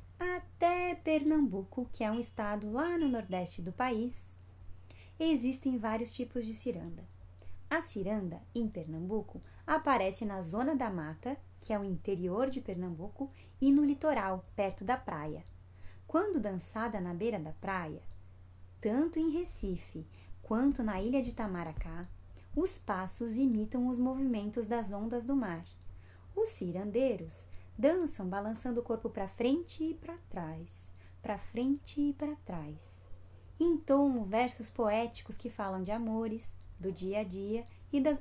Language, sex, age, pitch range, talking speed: Portuguese, female, 20-39, 170-255 Hz, 140 wpm